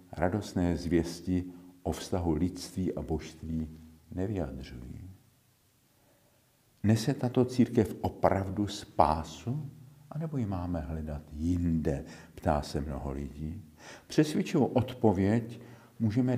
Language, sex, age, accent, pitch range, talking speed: Czech, male, 50-69, native, 85-115 Hz, 95 wpm